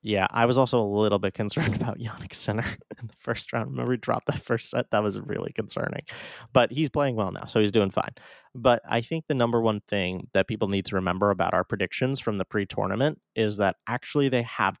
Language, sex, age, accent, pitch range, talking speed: English, male, 20-39, American, 100-135 Hz, 230 wpm